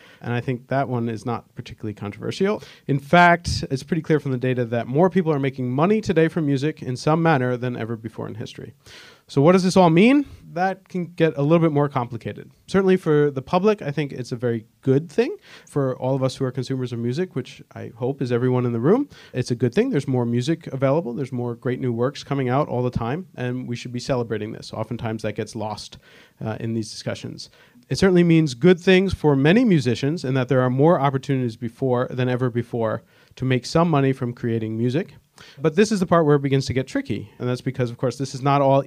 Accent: American